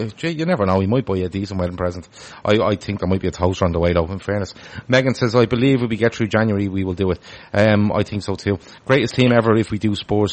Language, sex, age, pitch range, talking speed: English, male, 30-49, 95-115 Hz, 290 wpm